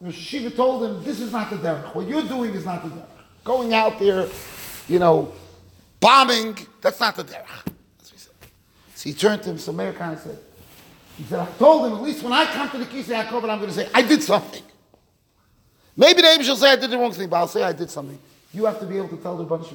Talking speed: 250 wpm